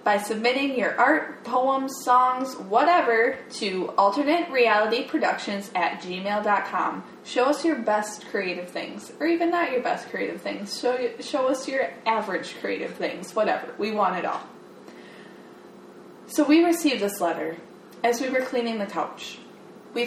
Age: 20-39